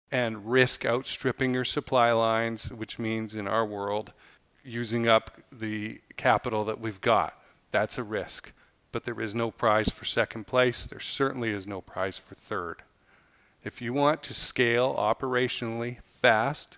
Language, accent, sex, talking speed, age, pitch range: English, American, male, 155 wpm, 40-59, 110-140 Hz